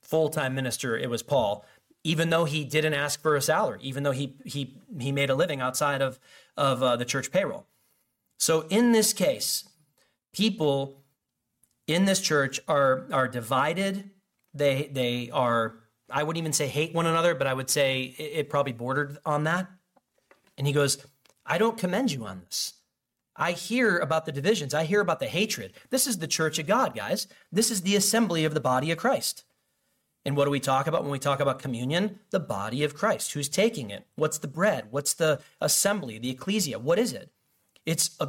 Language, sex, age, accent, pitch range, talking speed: English, male, 30-49, American, 130-165 Hz, 195 wpm